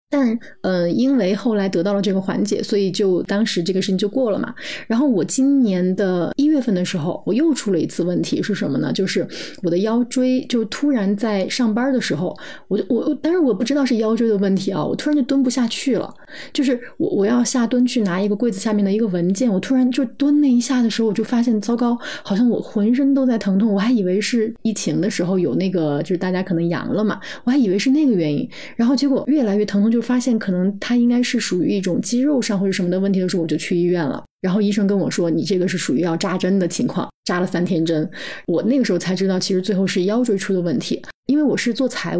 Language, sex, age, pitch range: Chinese, female, 30-49, 190-255 Hz